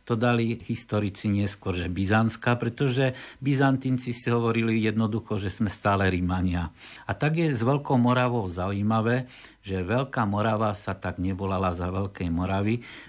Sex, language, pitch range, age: male, Slovak, 95-120 Hz, 50-69